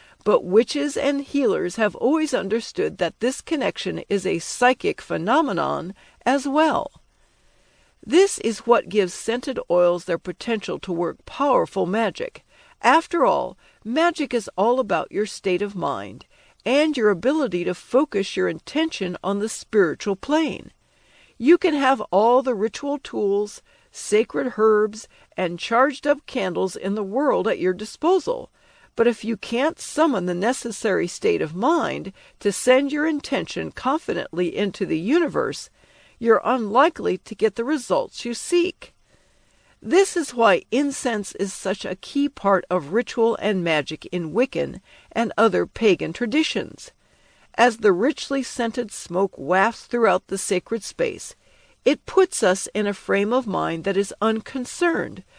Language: English